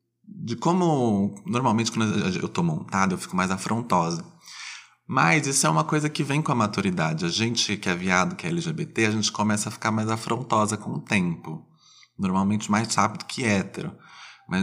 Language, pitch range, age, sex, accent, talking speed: Portuguese, 105-140 Hz, 20-39, male, Brazilian, 185 wpm